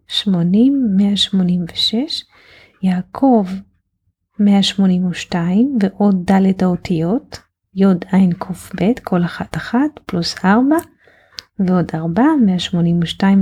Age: 30-49